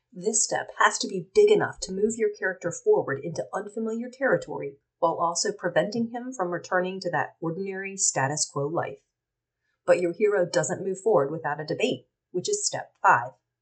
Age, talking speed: 30-49, 175 wpm